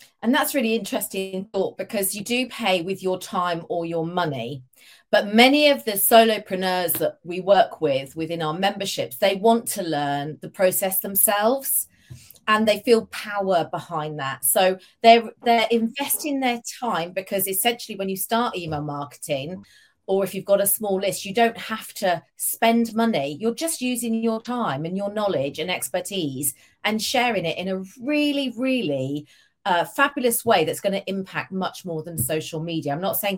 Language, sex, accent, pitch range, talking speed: English, female, British, 160-225 Hz, 175 wpm